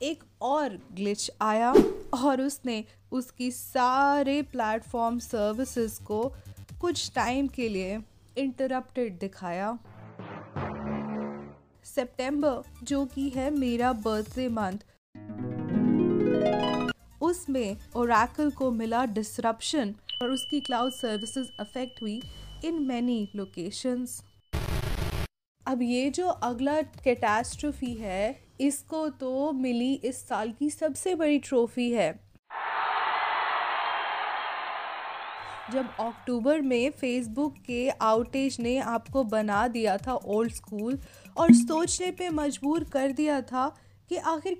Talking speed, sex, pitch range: 100 wpm, female, 225-285 Hz